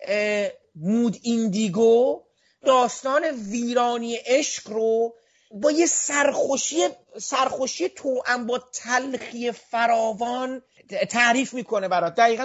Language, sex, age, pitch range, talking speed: Persian, male, 40-59, 210-260 Hz, 85 wpm